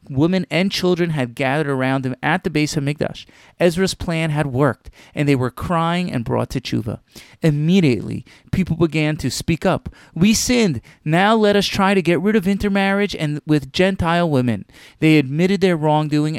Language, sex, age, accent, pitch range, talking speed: English, male, 30-49, American, 130-170 Hz, 180 wpm